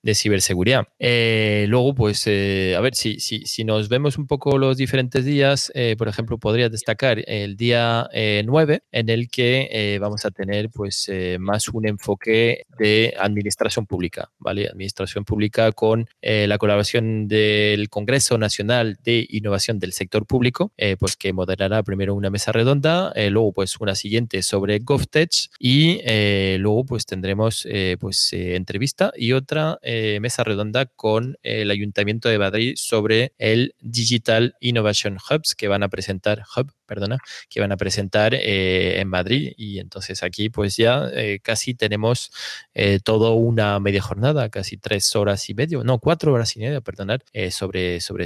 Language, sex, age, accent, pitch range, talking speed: Spanish, male, 20-39, Argentinian, 100-125 Hz, 170 wpm